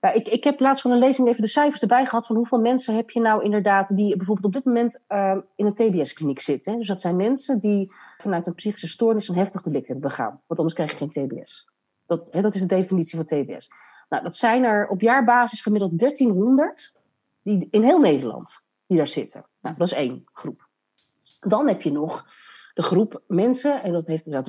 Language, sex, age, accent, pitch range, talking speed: Dutch, female, 40-59, Dutch, 170-230 Hz, 215 wpm